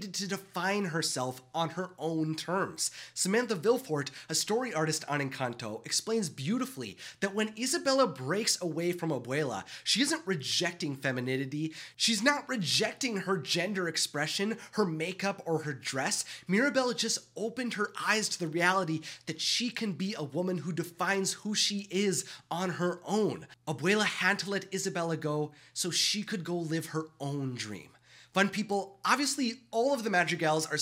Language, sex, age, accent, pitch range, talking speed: English, male, 30-49, American, 160-215 Hz, 160 wpm